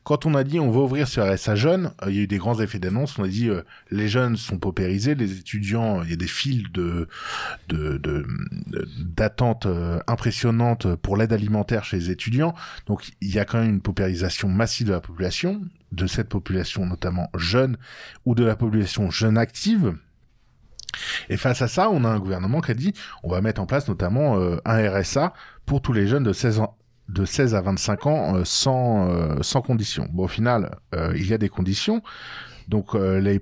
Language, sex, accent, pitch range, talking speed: French, male, French, 95-120 Hz, 210 wpm